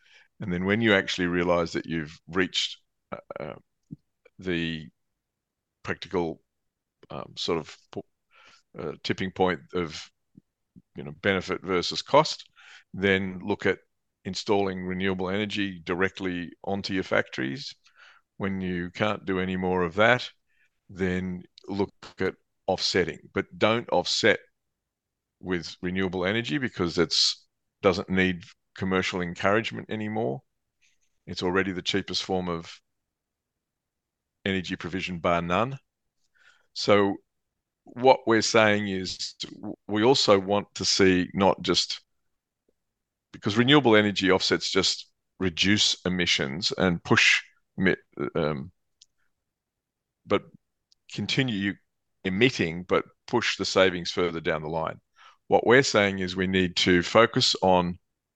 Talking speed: 115 wpm